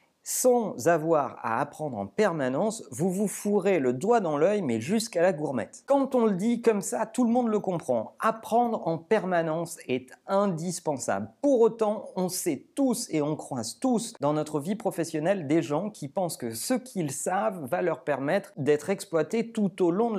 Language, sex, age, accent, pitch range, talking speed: French, male, 40-59, French, 150-215 Hz, 185 wpm